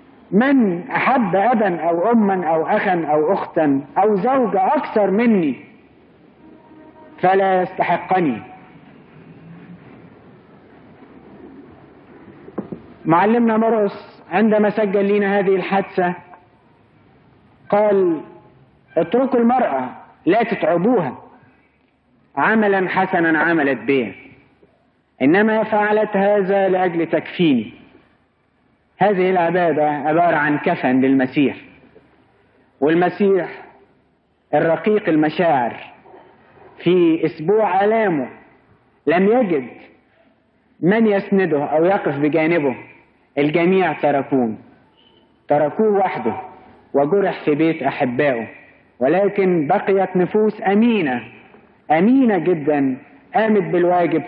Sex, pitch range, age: male, 155-210 Hz, 50-69